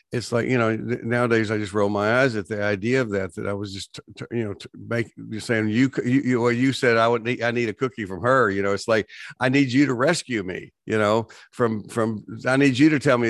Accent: American